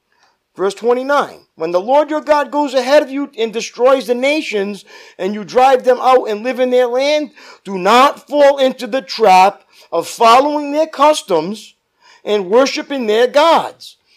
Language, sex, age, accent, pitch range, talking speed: English, male, 50-69, American, 185-265 Hz, 165 wpm